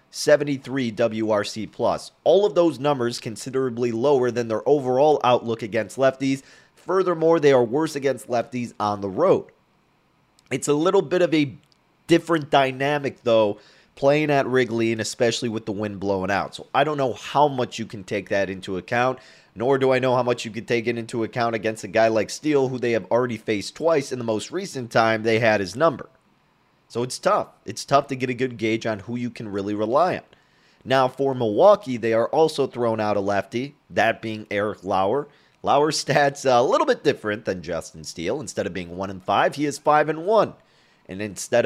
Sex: male